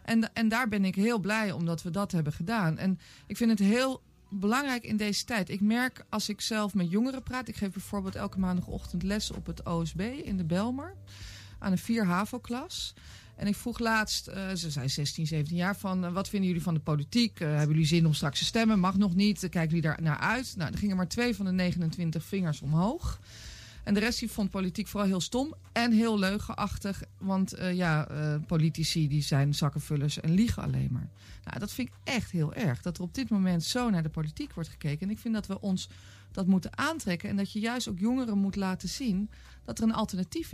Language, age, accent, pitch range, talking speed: Dutch, 40-59, Dutch, 160-210 Hz, 220 wpm